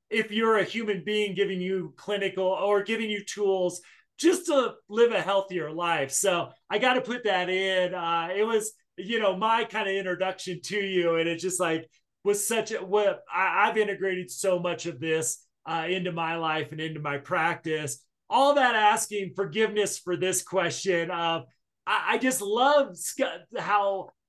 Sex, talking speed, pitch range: male, 180 wpm, 170-210 Hz